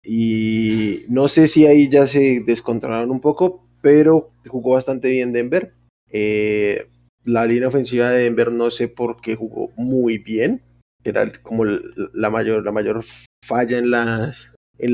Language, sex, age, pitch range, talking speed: Spanish, male, 20-39, 120-145 Hz, 155 wpm